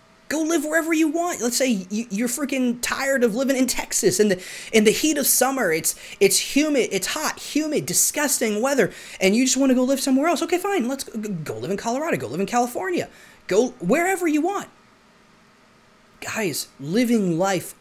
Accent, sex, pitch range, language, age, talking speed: American, male, 180-255 Hz, English, 20-39, 190 wpm